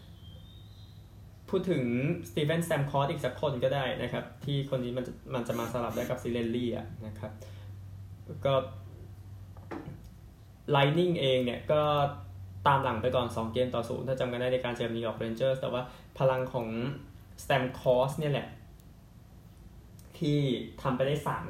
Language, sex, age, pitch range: Thai, male, 10-29, 110-135 Hz